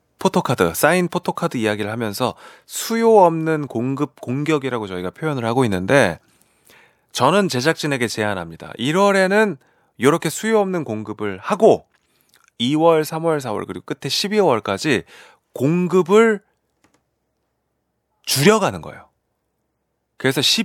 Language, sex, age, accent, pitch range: Korean, male, 30-49, native, 105-180 Hz